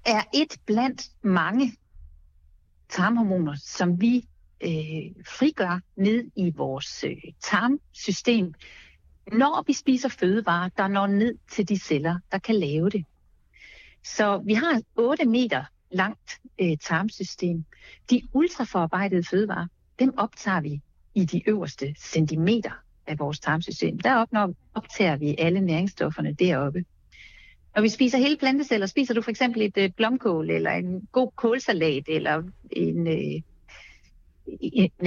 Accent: native